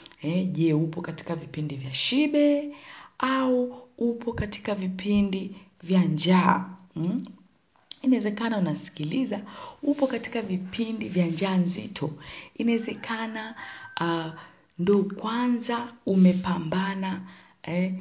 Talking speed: 95 wpm